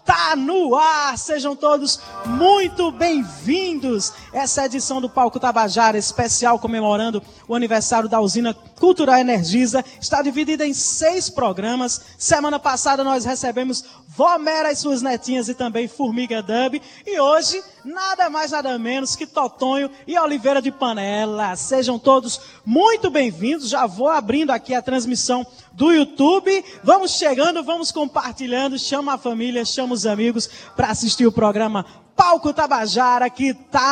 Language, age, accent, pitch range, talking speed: Portuguese, 20-39, Brazilian, 230-290 Hz, 145 wpm